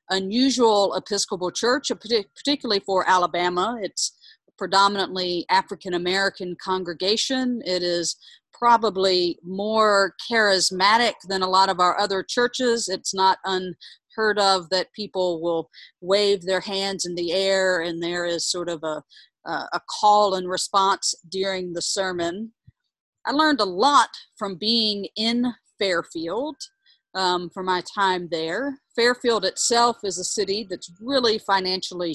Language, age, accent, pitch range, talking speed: English, 40-59, American, 180-225 Hz, 130 wpm